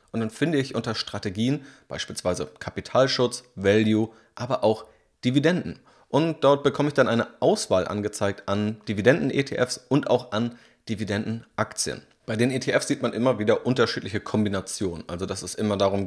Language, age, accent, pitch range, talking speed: German, 30-49, German, 105-130 Hz, 150 wpm